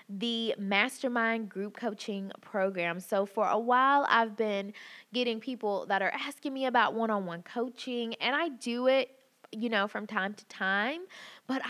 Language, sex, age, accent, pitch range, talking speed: English, female, 20-39, American, 190-240 Hz, 160 wpm